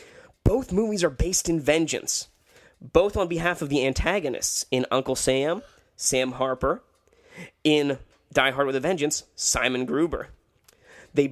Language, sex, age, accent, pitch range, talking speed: English, male, 30-49, American, 130-175 Hz, 140 wpm